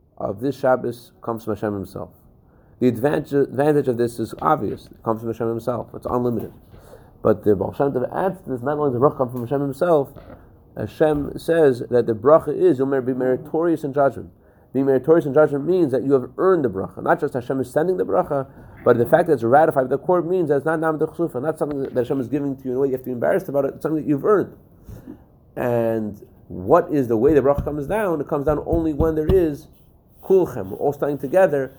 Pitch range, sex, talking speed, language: 115-150 Hz, male, 230 wpm, English